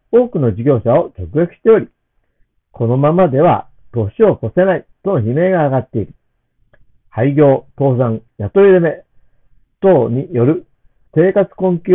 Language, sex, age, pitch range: Japanese, male, 50-69, 120-185 Hz